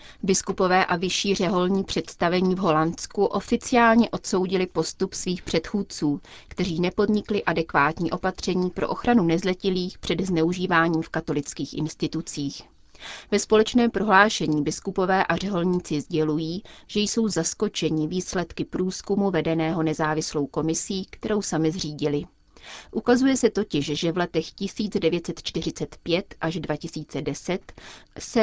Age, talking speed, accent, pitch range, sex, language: 30-49, 110 wpm, native, 160-195 Hz, female, Czech